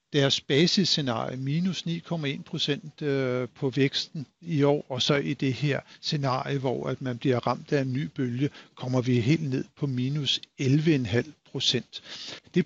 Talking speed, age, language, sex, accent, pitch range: 150 wpm, 60-79, Danish, male, native, 130-155 Hz